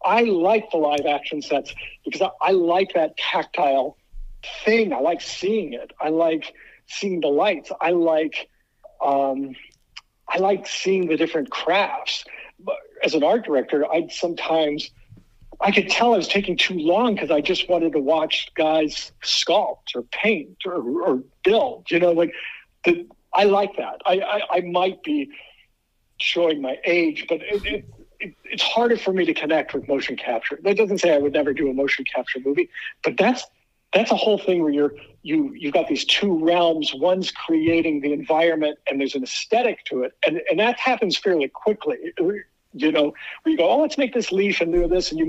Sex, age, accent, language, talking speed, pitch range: male, 50-69, American, English, 190 wpm, 155-205 Hz